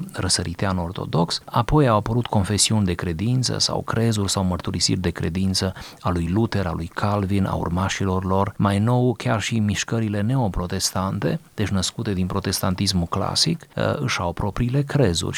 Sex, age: male, 30-49